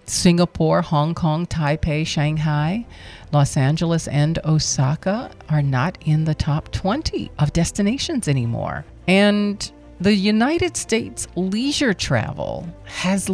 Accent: American